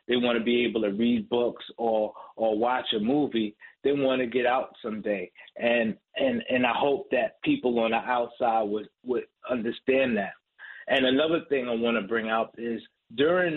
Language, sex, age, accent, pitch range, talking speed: English, male, 30-49, American, 115-145 Hz, 190 wpm